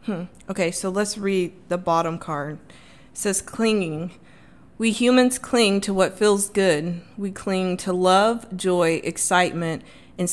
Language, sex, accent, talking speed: English, female, American, 145 wpm